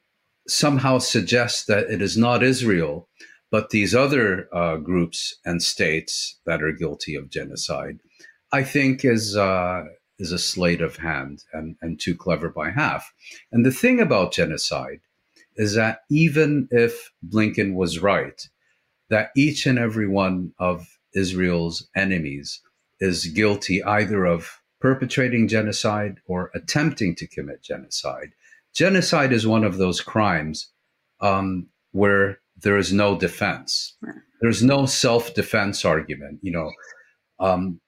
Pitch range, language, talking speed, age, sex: 90-125 Hz, English, 135 wpm, 50-69, male